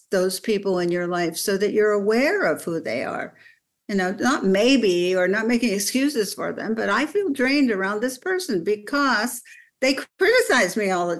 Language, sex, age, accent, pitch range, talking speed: English, female, 60-79, American, 195-245 Hz, 195 wpm